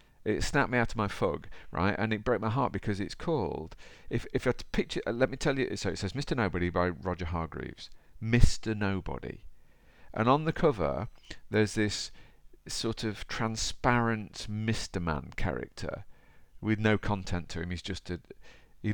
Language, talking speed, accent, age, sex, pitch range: English, 180 wpm, British, 50-69, male, 85-115 Hz